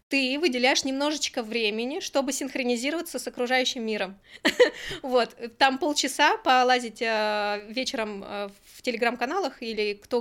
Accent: native